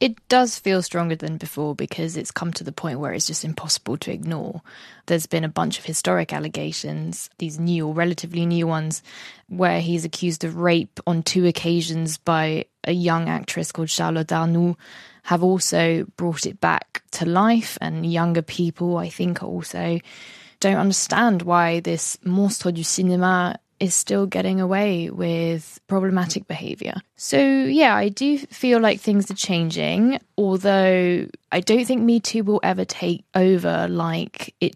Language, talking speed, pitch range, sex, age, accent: English, 160 wpm, 165-195 Hz, female, 20-39, British